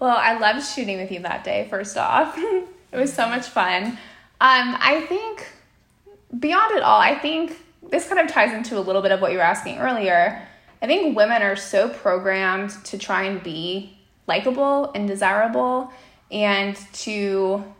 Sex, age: female, 20-39